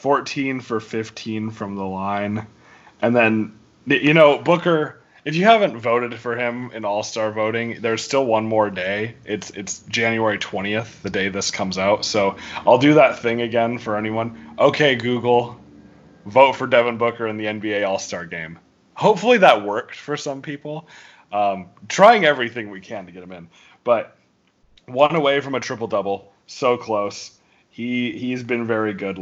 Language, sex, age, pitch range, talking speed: English, male, 30-49, 105-140 Hz, 165 wpm